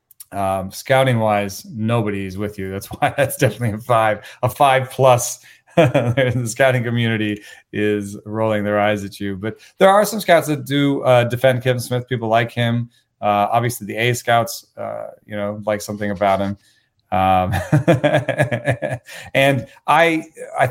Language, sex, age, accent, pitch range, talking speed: English, male, 30-49, American, 105-135 Hz, 155 wpm